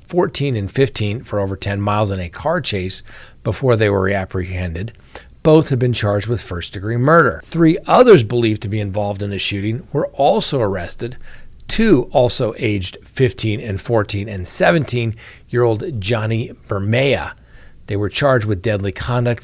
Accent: American